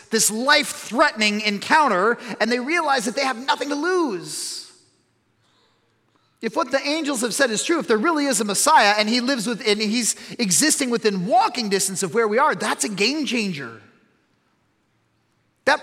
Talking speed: 170 wpm